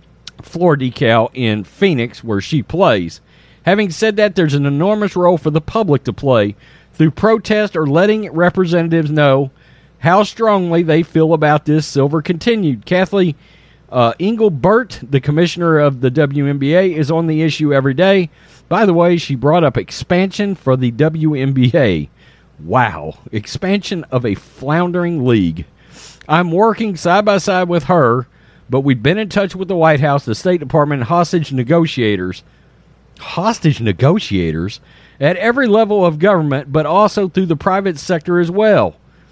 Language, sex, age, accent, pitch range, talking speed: English, male, 40-59, American, 135-185 Hz, 150 wpm